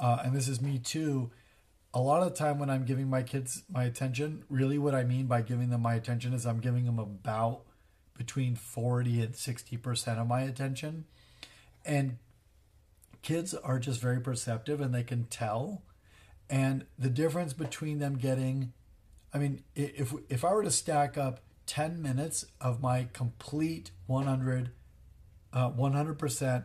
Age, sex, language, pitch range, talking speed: 40-59, male, English, 115-140 Hz, 160 wpm